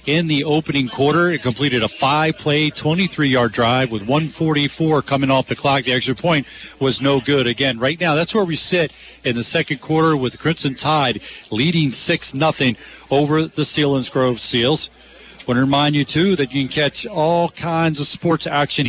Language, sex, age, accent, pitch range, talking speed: English, male, 40-59, American, 135-160 Hz, 185 wpm